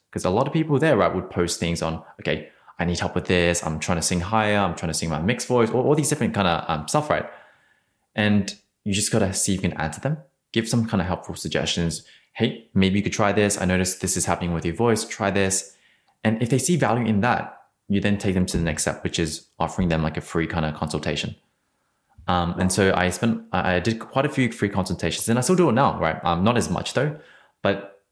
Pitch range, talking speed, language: 85-110 Hz, 250 wpm, English